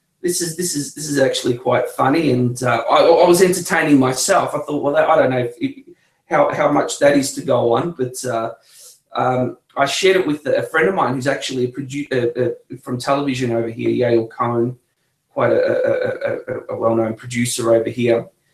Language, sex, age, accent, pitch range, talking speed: English, male, 30-49, Australian, 130-180 Hz, 210 wpm